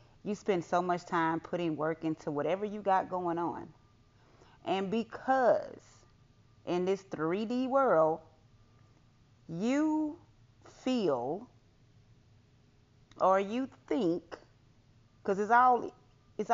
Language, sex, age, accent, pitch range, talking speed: English, female, 30-49, American, 130-195 Hz, 95 wpm